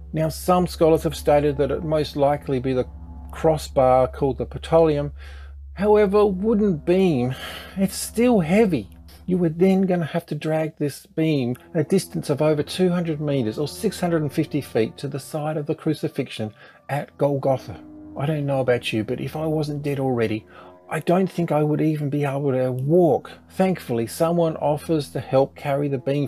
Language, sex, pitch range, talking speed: English, male, 135-170 Hz, 175 wpm